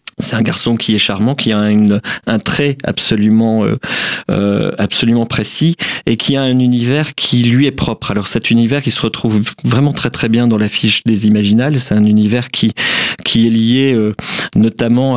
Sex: male